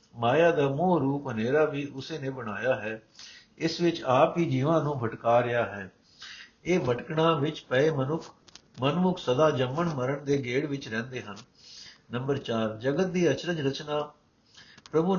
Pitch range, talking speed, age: 125-155 Hz, 160 wpm, 60-79